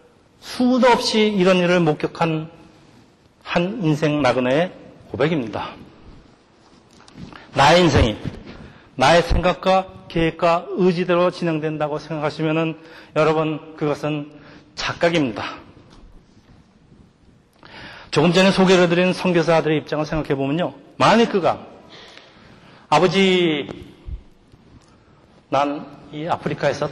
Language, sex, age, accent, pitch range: Korean, male, 40-59, native, 140-180 Hz